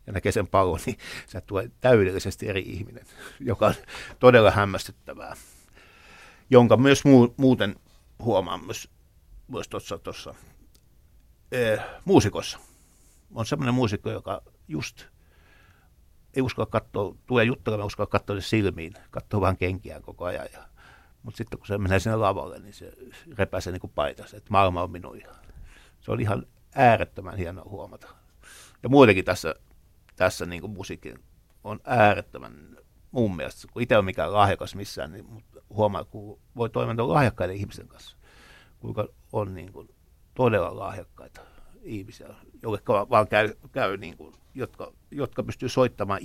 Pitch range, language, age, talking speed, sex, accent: 95-115 Hz, Finnish, 60-79, 140 wpm, male, native